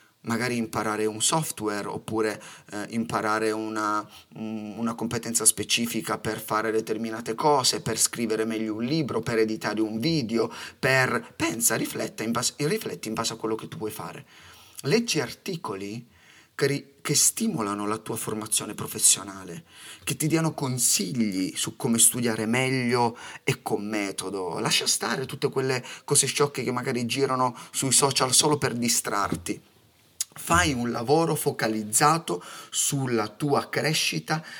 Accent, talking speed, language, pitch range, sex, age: native, 140 wpm, Italian, 110-160 Hz, male, 30-49